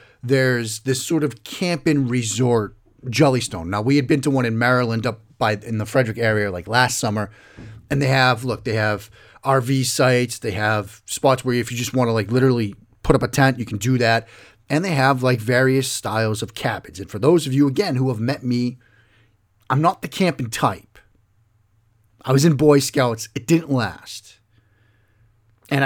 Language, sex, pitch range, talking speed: English, male, 110-135 Hz, 195 wpm